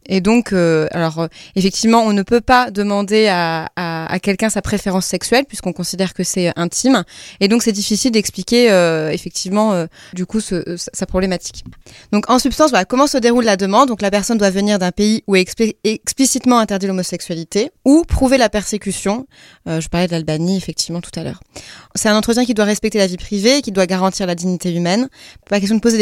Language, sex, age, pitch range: French, female, 30-49, 180-230 Hz